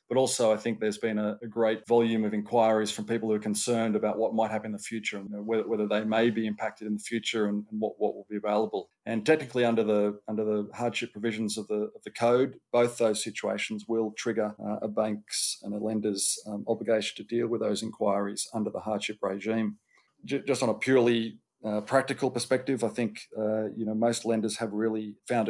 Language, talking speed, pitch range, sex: English, 190 wpm, 105-115 Hz, male